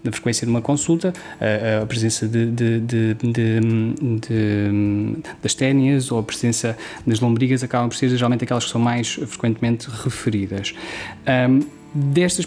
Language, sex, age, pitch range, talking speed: Portuguese, male, 20-39, 115-140 Hz, 120 wpm